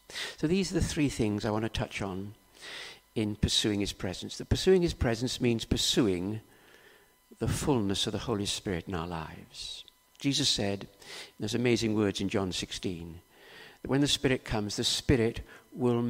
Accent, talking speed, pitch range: British, 175 wpm, 105-140 Hz